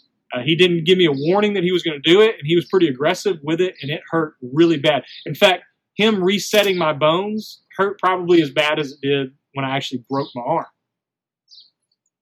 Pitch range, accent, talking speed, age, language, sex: 155-200 Hz, American, 220 wpm, 30-49, English, male